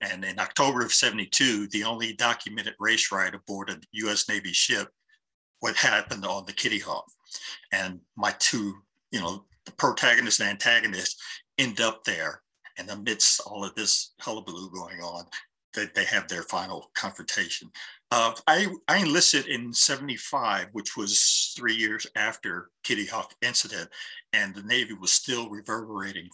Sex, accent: male, American